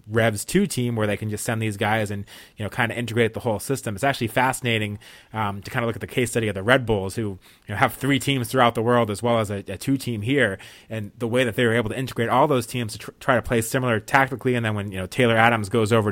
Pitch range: 105-125 Hz